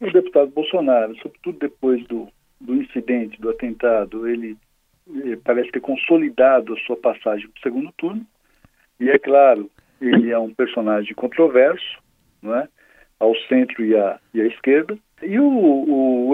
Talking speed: 160 wpm